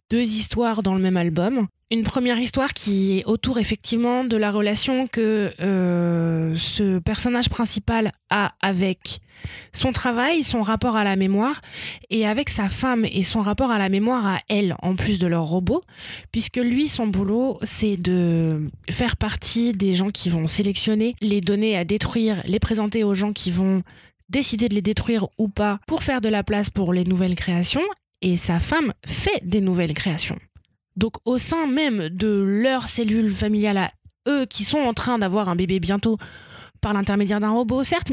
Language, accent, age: French, French, 20-39